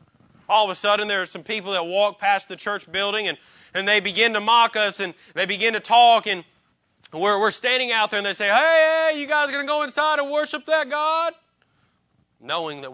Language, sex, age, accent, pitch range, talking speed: English, male, 30-49, American, 140-190 Hz, 225 wpm